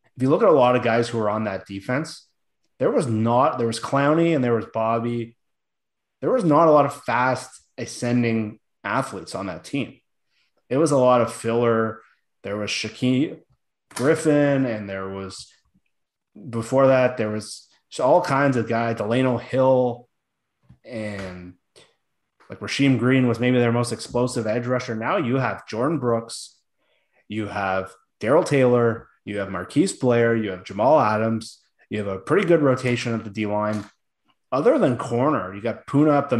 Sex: male